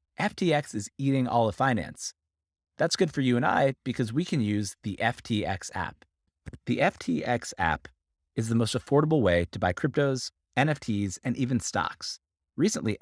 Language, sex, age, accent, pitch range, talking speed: English, male, 30-49, American, 85-130 Hz, 160 wpm